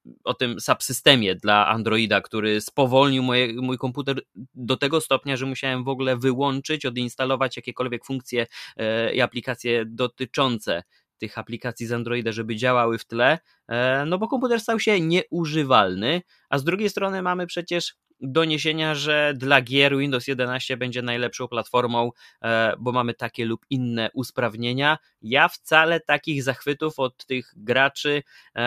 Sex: male